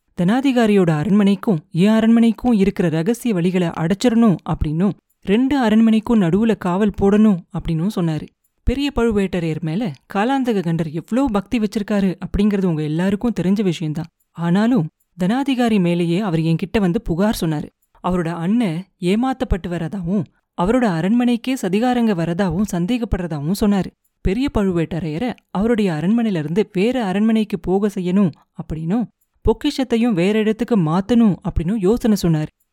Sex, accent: female, native